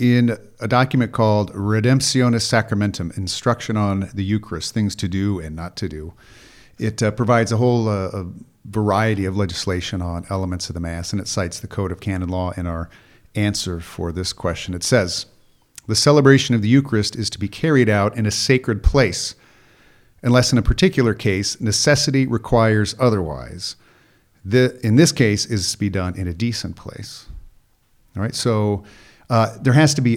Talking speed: 180 wpm